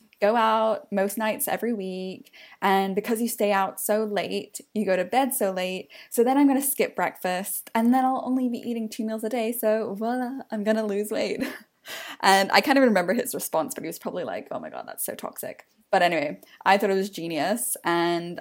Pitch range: 175-220 Hz